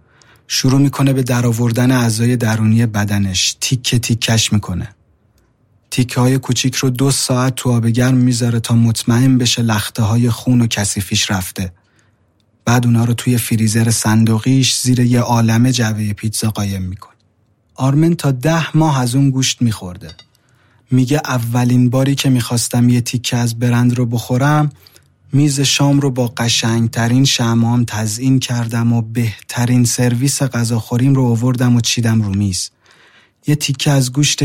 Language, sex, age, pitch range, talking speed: Persian, male, 30-49, 110-125 Hz, 145 wpm